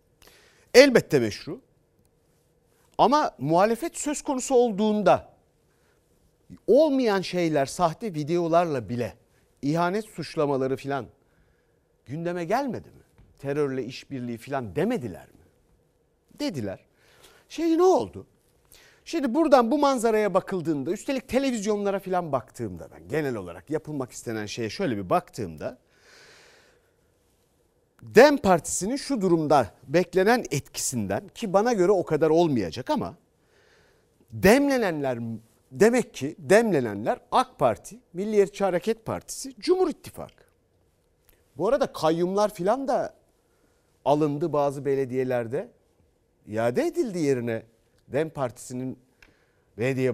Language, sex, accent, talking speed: Turkish, male, native, 100 wpm